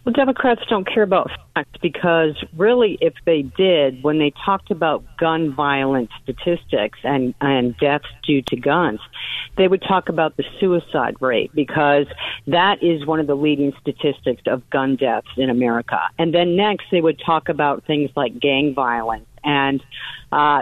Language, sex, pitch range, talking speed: English, female, 140-175 Hz, 165 wpm